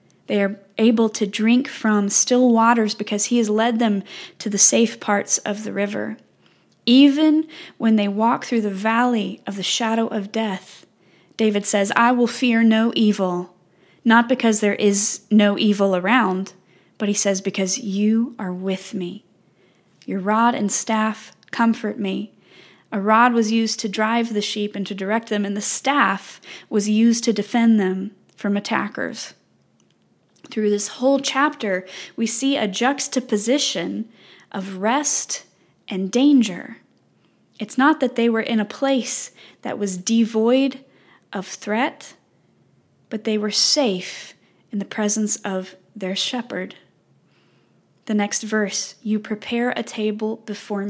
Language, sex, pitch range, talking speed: English, female, 200-235 Hz, 145 wpm